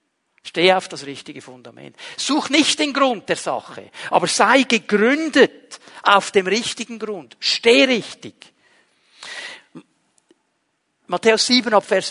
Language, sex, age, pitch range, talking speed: German, male, 60-79, 175-255 Hz, 115 wpm